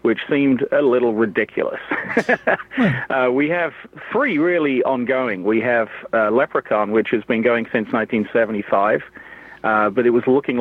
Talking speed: 145 wpm